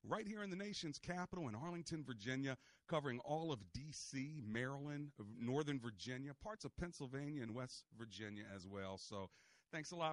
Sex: male